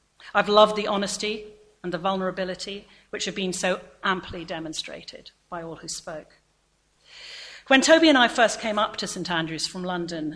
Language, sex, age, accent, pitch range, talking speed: English, female, 40-59, British, 170-220 Hz, 170 wpm